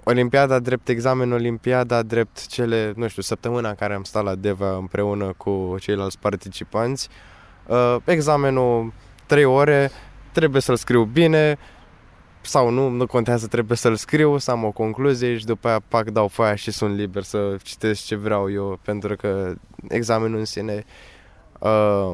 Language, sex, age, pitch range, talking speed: Romanian, male, 20-39, 105-130 Hz, 155 wpm